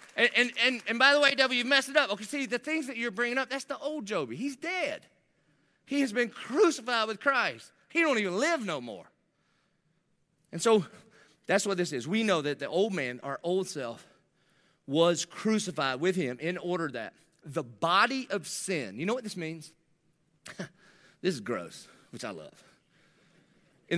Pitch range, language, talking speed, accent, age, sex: 170-265 Hz, English, 190 wpm, American, 30-49, male